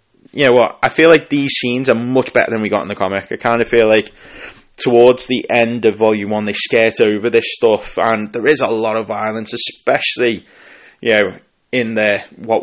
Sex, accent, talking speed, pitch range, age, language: male, British, 220 wpm, 100-120 Hz, 20-39, English